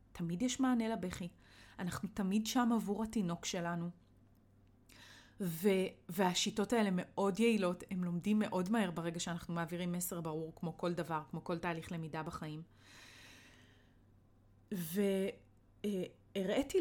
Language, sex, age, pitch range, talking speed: Hebrew, female, 30-49, 170-230 Hz, 120 wpm